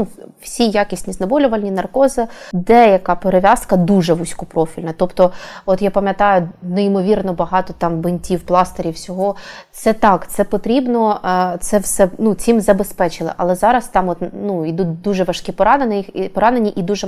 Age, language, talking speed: 20-39, Ukrainian, 140 wpm